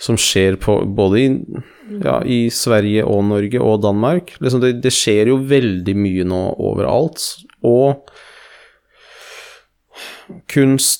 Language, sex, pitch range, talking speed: Swedish, male, 100-130 Hz, 125 wpm